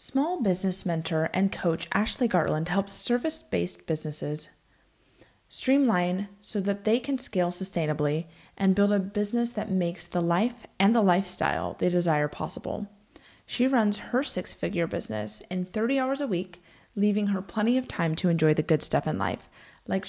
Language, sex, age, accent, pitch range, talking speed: English, female, 30-49, American, 165-210 Hz, 160 wpm